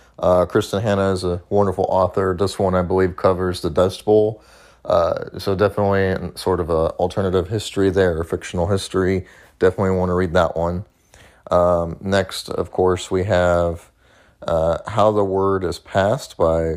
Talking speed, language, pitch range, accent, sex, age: 160 wpm, English, 85-100 Hz, American, male, 30-49